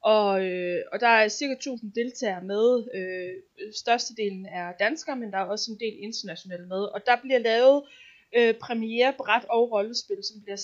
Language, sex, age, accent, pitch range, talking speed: Danish, female, 20-39, native, 200-255 Hz, 180 wpm